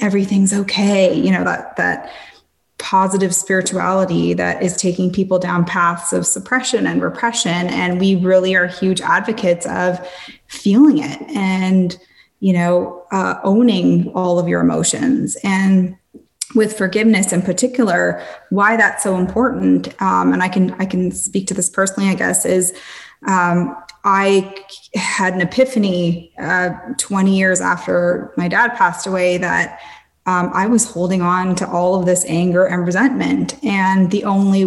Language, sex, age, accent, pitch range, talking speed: English, female, 20-39, American, 175-200 Hz, 150 wpm